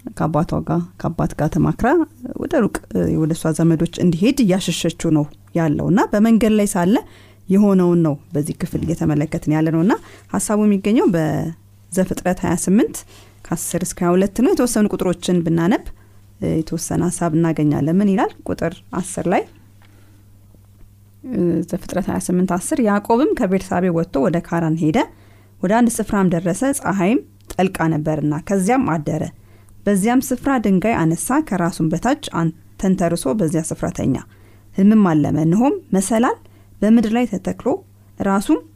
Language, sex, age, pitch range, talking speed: Amharic, female, 30-49, 140-195 Hz, 110 wpm